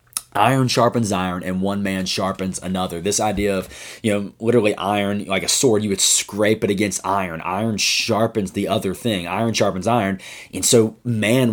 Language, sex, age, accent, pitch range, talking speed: English, male, 20-39, American, 95-110 Hz, 180 wpm